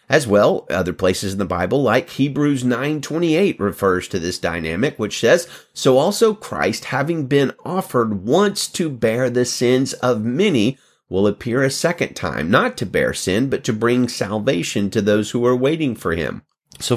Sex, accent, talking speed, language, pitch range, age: male, American, 175 wpm, English, 115-175 Hz, 30-49